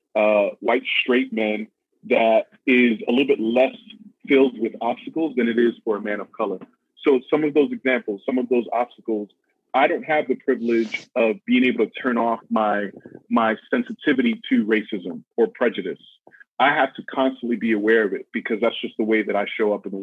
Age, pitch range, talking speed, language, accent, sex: 30-49, 110-140 Hz, 200 wpm, English, American, male